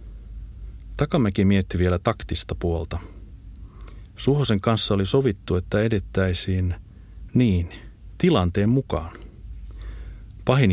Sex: male